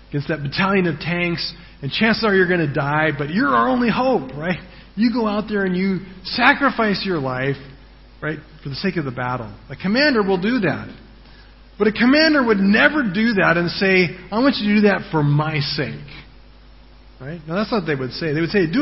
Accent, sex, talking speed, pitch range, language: American, male, 220 wpm, 145-215 Hz, English